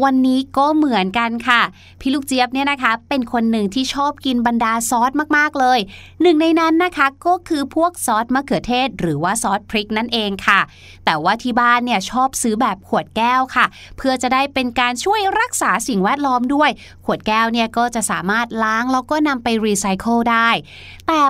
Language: Thai